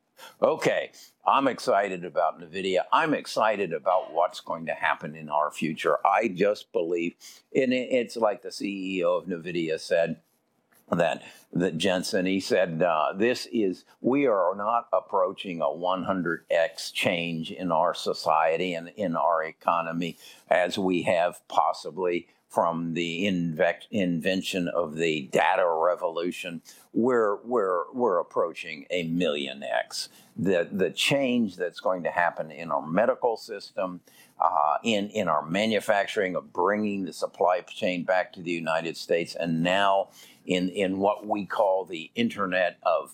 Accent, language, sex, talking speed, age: American, English, male, 145 wpm, 50-69